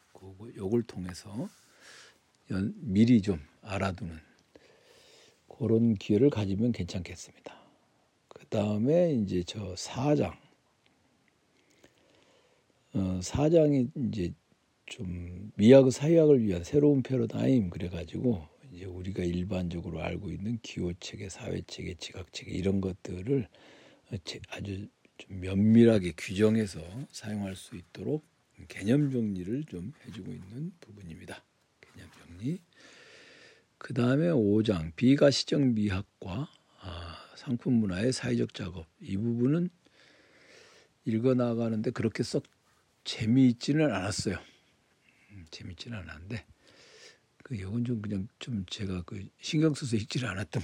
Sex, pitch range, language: male, 95-130 Hz, Korean